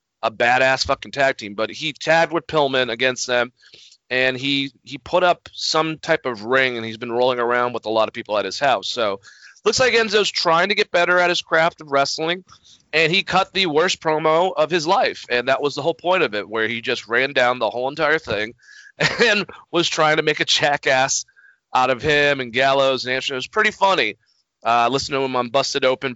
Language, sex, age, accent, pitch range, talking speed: English, male, 30-49, American, 125-170 Hz, 225 wpm